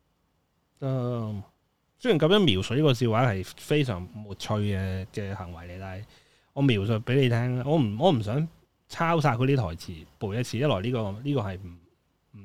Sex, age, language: male, 20-39, Chinese